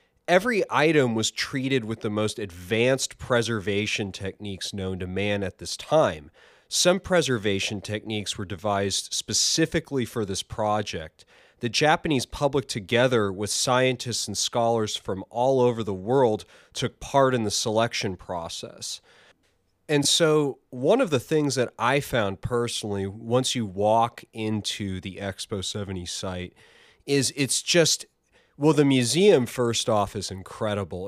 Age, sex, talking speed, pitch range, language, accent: 30-49, male, 140 wpm, 100-130 Hz, English, American